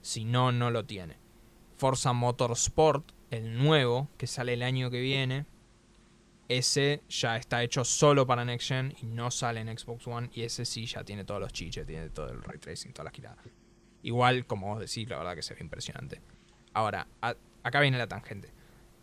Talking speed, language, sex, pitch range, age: 190 wpm, Spanish, male, 115-145 Hz, 20-39